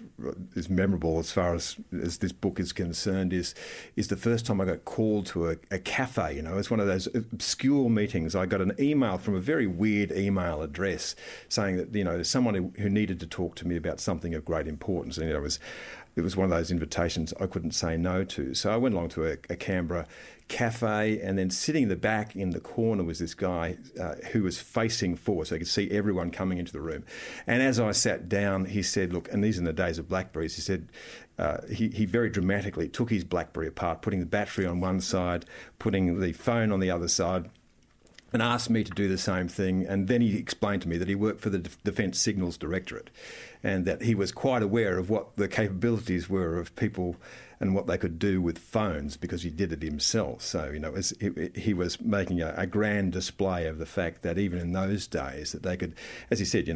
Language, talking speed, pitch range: English, 235 wpm, 85-105 Hz